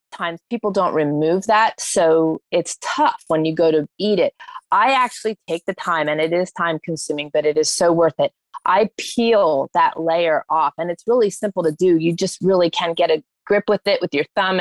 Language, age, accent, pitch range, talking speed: English, 30-49, American, 160-205 Hz, 220 wpm